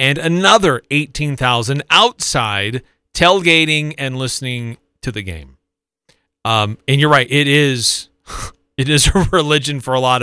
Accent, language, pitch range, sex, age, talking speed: American, English, 120-165 Hz, male, 40-59, 140 wpm